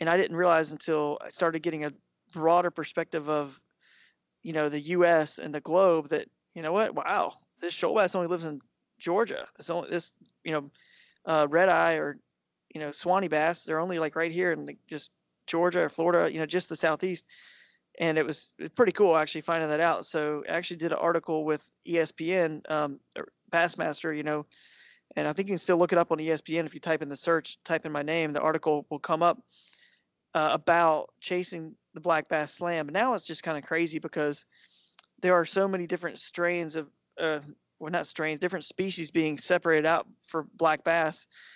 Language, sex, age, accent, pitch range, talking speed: English, male, 20-39, American, 155-175 Hz, 200 wpm